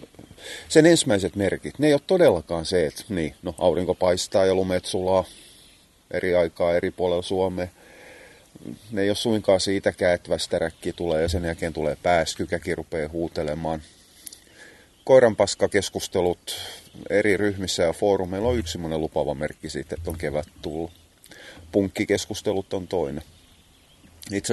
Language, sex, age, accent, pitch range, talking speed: Finnish, male, 30-49, native, 80-100 Hz, 130 wpm